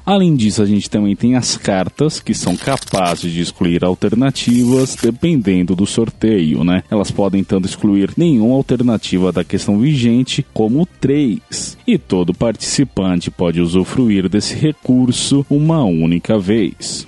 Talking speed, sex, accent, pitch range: 135 wpm, male, Brazilian, 95-130 Hz